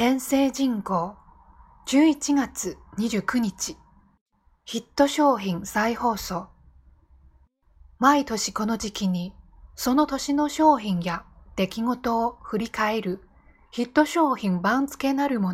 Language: Chinese